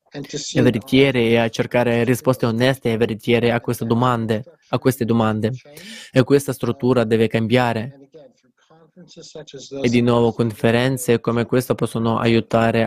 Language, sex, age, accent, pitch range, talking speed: Italian, male, 20-39, native, 115-130 Hz, 125 wpm